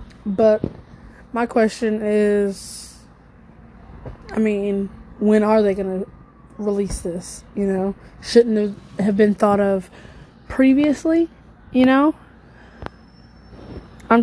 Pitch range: 200-225 Hz